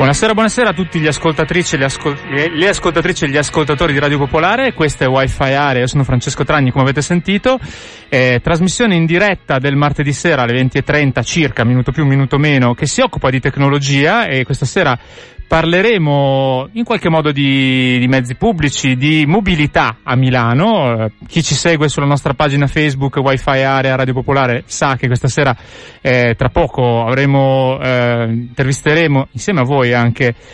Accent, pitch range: native, 130-160 Hz